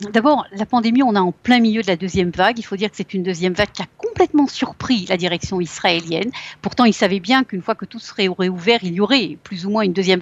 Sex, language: female, Russian